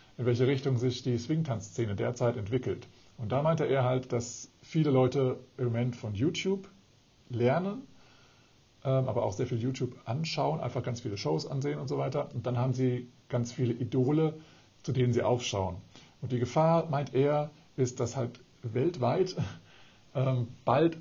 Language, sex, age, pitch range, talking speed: German, male, 50-69, 115-135 Hz, 160 wpm